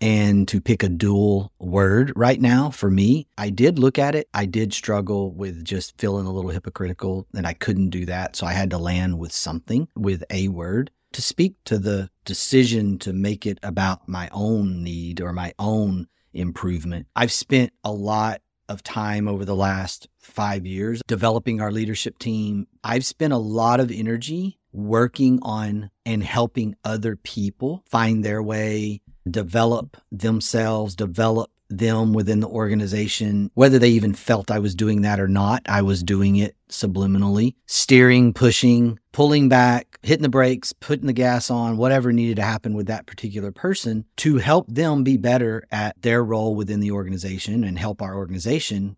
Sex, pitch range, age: male, 100-120 Hz, 40-59